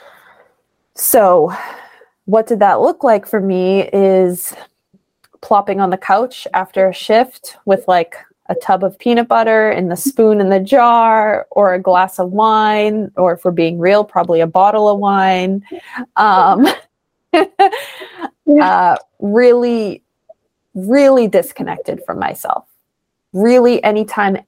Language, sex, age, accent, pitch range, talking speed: English, female, 20-39, American, 180-220 Hz, 125 wpm